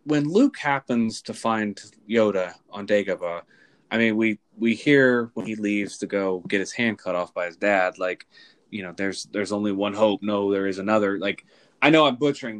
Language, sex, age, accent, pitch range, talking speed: English, male, 20-39, American, 105-140 Hz, 205 wpm